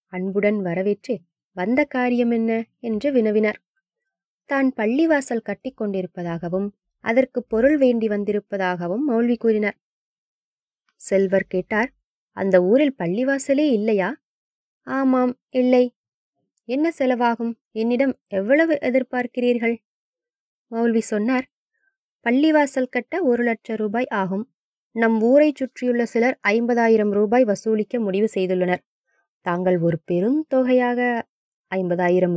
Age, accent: 20-39, Indian